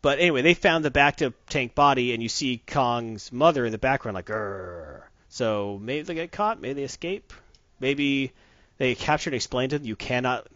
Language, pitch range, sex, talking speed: English, 115-145 Hz, male, 205 wpm